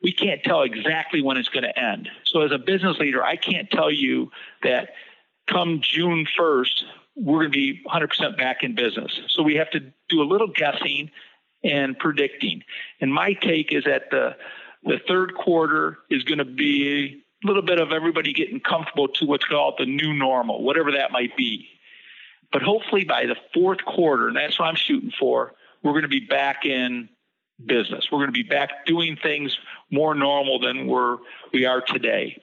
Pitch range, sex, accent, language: 135-170 Hz, male, American, English